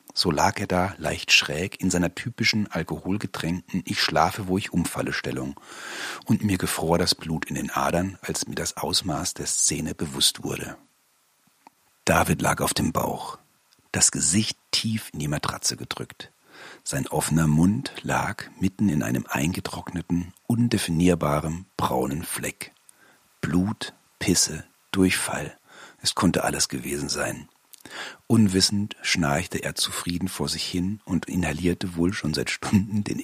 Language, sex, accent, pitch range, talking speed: German, male, German, 80-100 Hz, 140 wpm